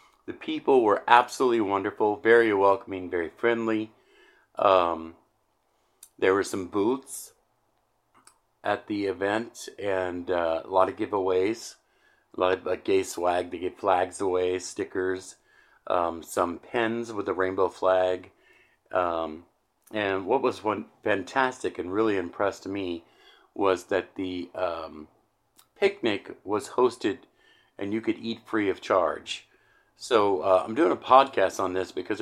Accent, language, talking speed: American, English, 135 wpm